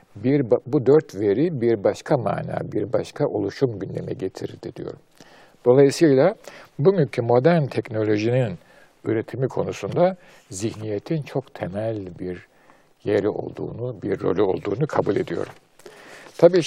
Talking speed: 110 wpm